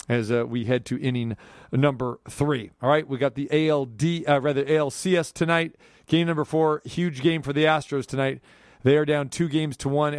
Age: 40-59